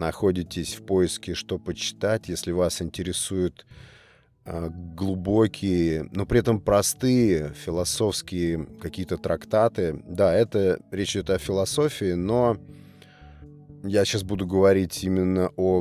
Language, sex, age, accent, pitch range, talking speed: Russian, male, 30-49, native, 90-110 Hz, 115 wpm